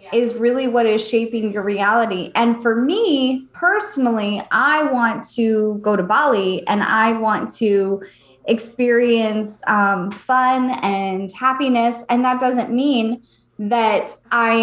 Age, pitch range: 10-29, 210-240 Hz